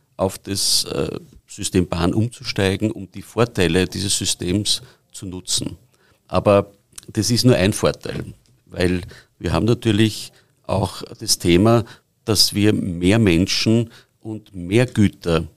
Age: 50-69